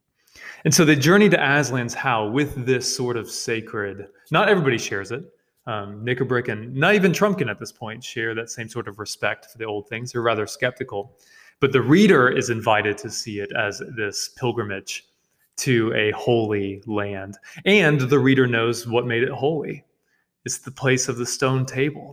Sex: male